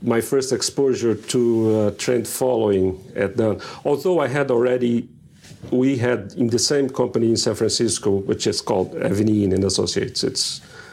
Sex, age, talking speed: male, 40-59, 160 wpm